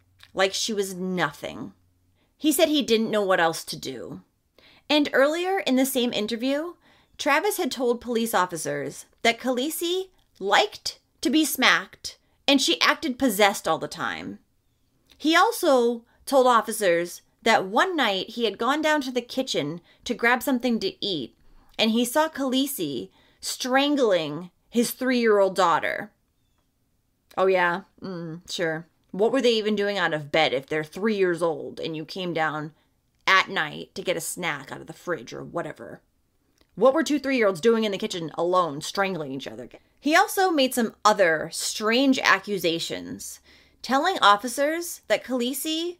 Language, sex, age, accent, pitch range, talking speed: English, female, 30-49, American, 180-280 Hz, 155 wpm